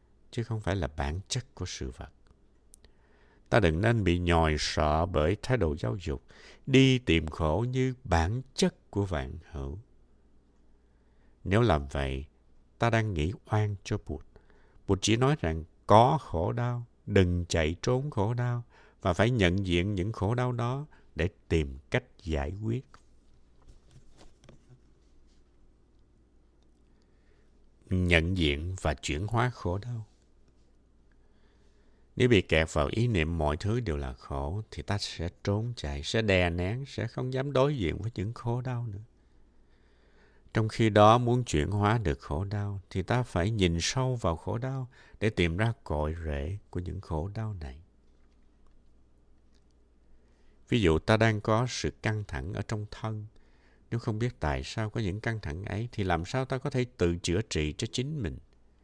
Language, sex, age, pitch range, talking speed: Vietnamese, male, 60-79, 70-110 Hz, 160 wpm